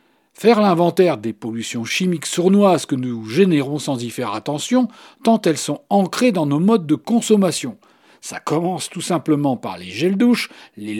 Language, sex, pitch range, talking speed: French, male, 145-225 Hz, 170 wpm